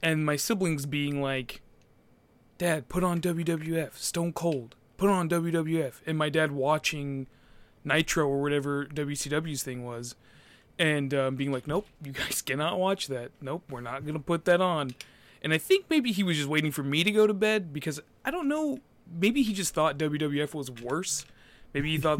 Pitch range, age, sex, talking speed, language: 140-175 Hz, 20-39, male, 190 wpm, English